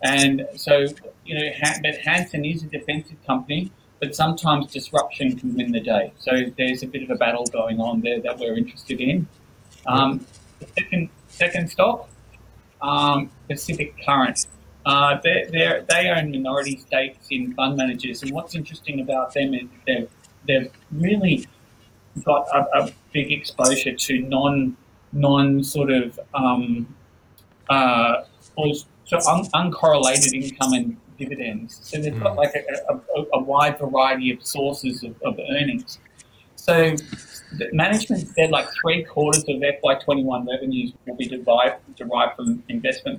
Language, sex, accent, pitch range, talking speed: English, male, Australian, 125-160 Hz, 150 wpm